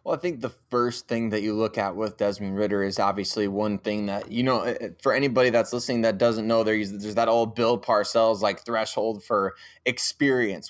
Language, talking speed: English, 210 wpm